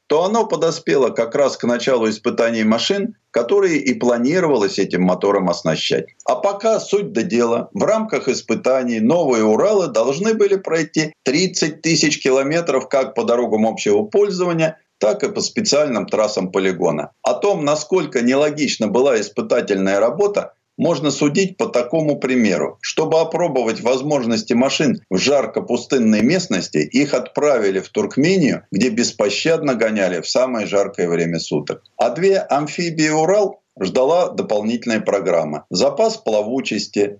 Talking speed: 135 wpm